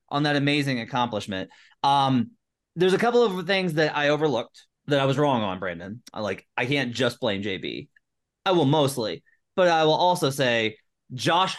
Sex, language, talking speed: male, English, 180 wpm